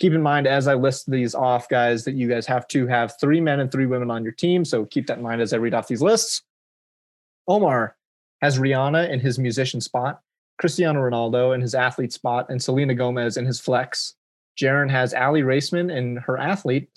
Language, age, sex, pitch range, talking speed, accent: English, 30-49, male, 125-150 Hz, 210 wpm, American